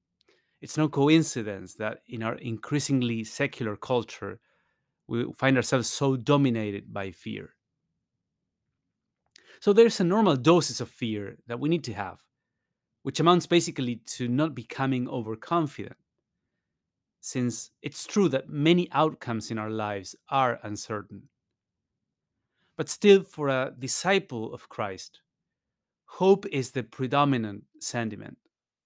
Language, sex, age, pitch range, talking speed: English, male, 30-49, 110-145 Hz, 120 wpm